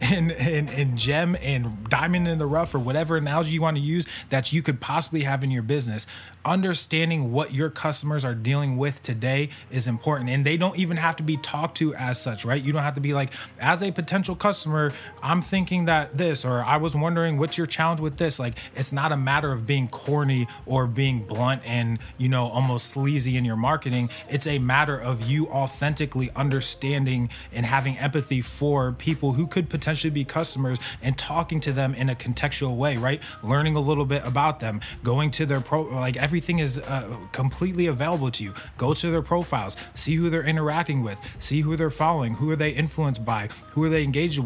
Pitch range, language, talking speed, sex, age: 125-155 Hz, English, 205 wpm, male, 20-39